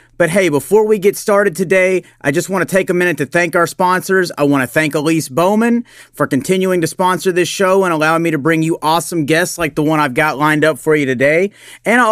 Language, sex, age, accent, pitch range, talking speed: English, male, 40-59, American, 155-190 Hz, 250 wpm